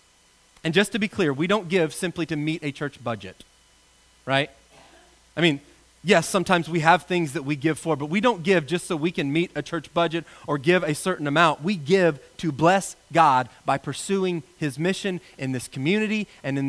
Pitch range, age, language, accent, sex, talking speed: 120-175 Hz, 30-49, English, American, male, 205 wpm